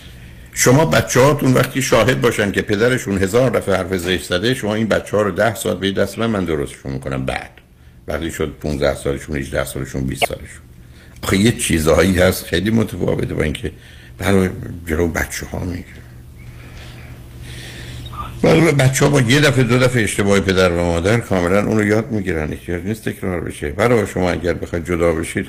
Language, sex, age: Persian, male, 60-79